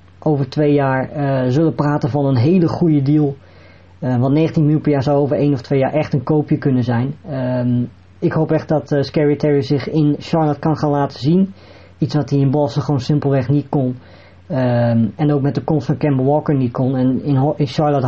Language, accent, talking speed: Dutch, Dutch, 225 wpm